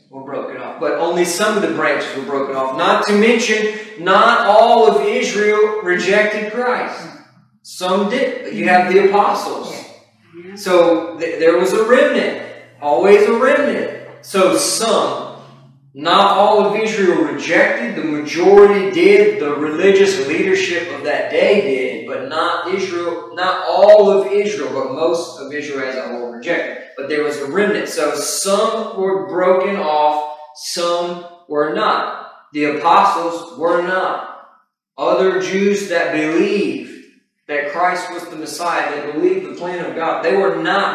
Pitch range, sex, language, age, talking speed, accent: 165-210 Hz, male, English, 40-59, 150 wpm, American